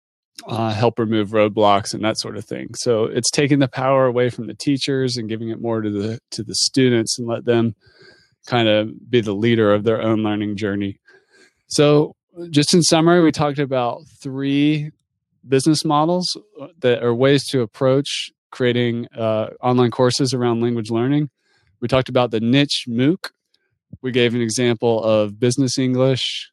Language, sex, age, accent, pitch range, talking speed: English, male, 20-39, American, 110-130 Hz, 170 wpm